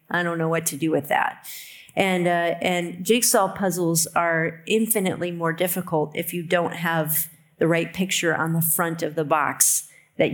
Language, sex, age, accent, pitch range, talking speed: English, female, 40-59, American, 165-195 Hz, 180 wpm